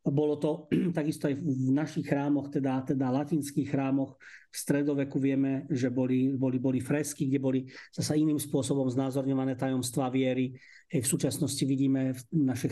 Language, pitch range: Slovak, 135-155 Hz